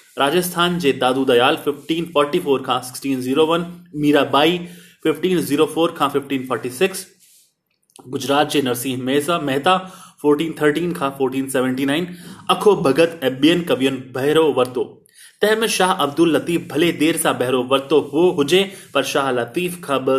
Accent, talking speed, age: native, 135 wpm, 30-49